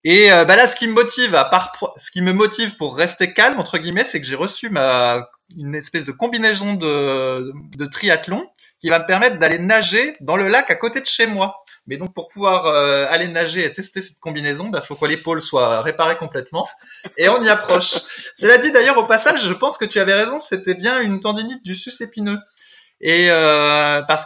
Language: French